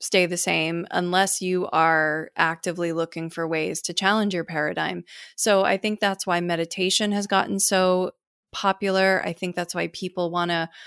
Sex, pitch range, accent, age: female, 170-195 Hz, American, 20-39